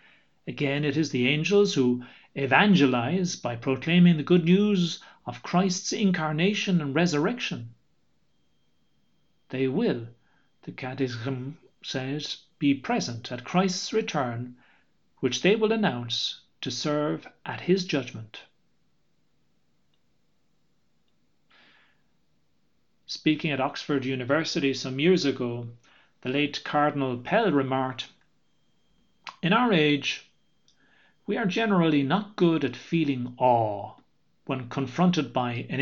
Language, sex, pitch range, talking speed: English, male, 130-180 Hz, 105 wpm